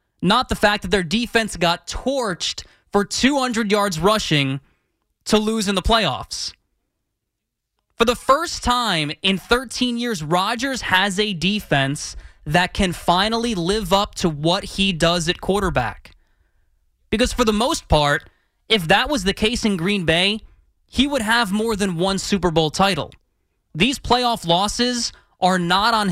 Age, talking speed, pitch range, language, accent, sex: 20-39, 155 wpm, 180-230 Hz, English, American, male